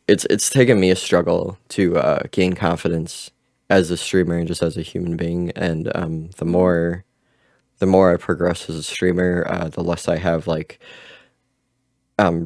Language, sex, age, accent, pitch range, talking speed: English, male, 20-39, American, 85-90 Hz, 180 wpm